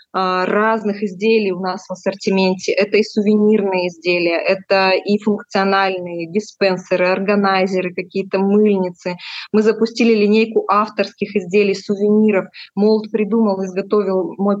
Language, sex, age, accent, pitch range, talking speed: Russian, female, 20-39, native, 190-220 Hz, 110 wpm